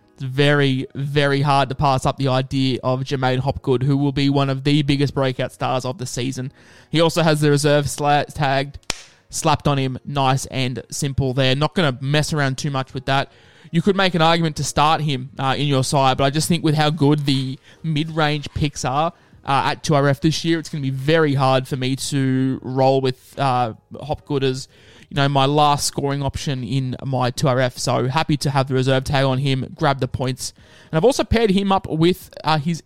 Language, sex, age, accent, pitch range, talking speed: English, male, 20-39, Australian, 130-155 Hz, 215 wpm